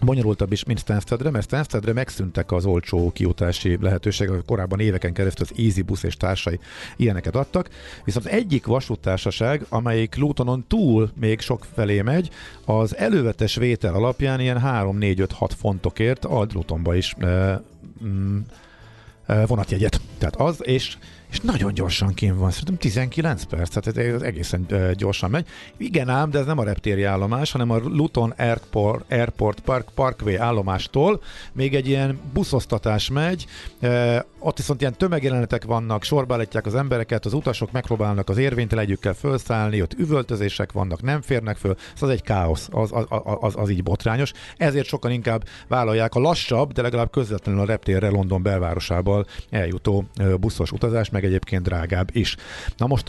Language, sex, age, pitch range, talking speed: Hungarian, male, 50-69, 95-125 Hz, 150 wpm